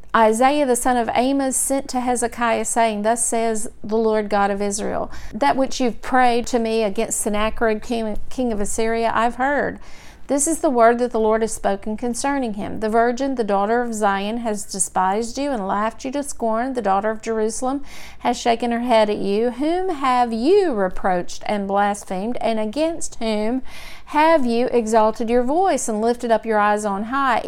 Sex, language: female, English